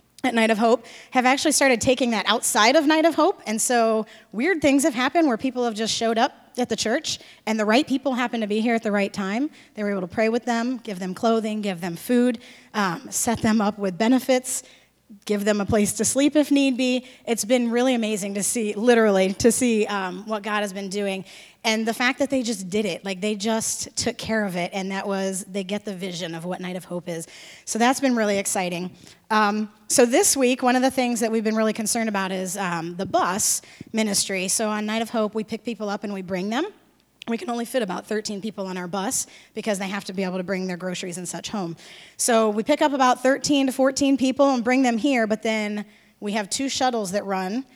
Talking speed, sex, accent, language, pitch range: 240 wpm, female, American, English, 200-250 Hz